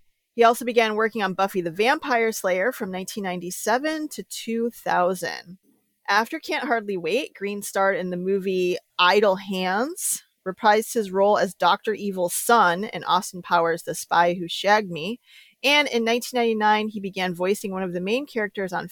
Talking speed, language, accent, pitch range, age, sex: 160 wpm, English, American, 180-230 Hz, 30-49, female